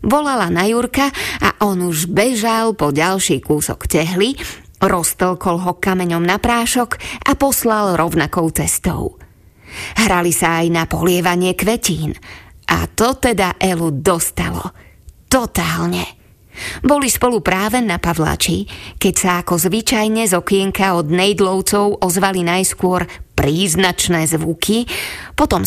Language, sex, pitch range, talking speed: Slovak, female, 170-225 Hz, 115 wpm